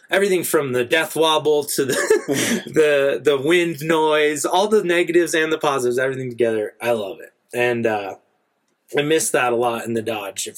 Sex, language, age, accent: male, English, 20-39, American